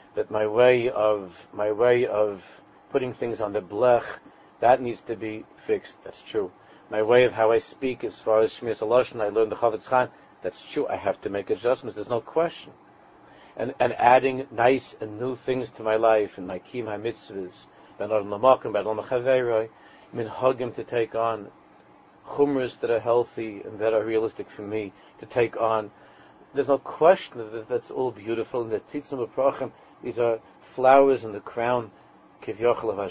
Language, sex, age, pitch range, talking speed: English, male, 50-69, 110-130 Hz, 180 wpm